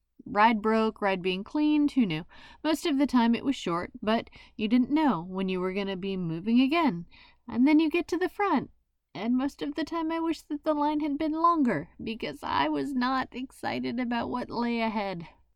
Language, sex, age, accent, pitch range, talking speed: English, female, 30-49, American, 205-275 Hz, 210 wpm